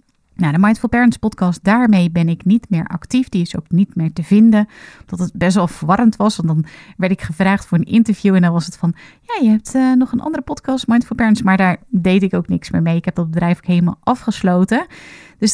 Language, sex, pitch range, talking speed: Dutch, female, 170-215 Hz, 245 wpm